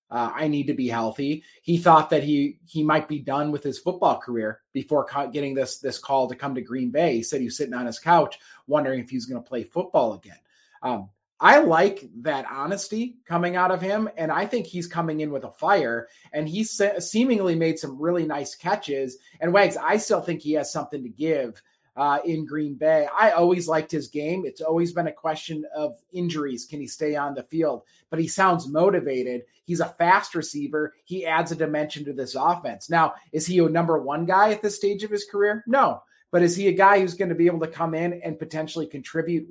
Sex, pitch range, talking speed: male, 145-180 Hz, 225 wpm